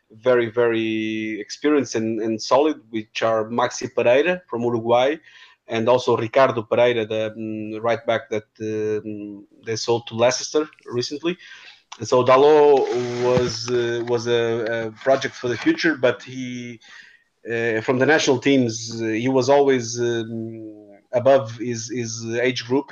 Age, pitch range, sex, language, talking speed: 30-49, 110-125 Hz, male, English, 145 wpm